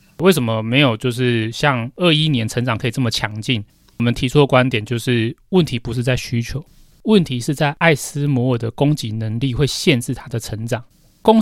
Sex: male